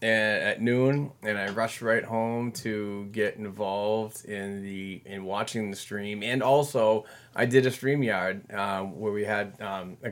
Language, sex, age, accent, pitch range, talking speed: English, male, 20-39, American, 105-120 Hz, 170 wpm